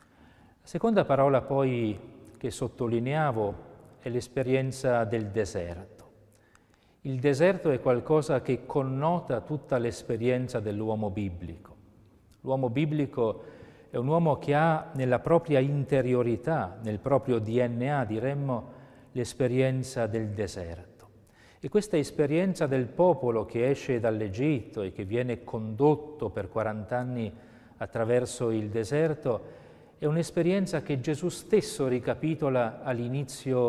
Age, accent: 40-59, native